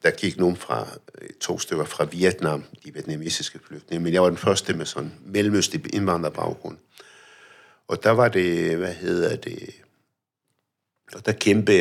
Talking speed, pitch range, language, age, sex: 150 wpm, 85-105 Hz, Danish, 60-79, male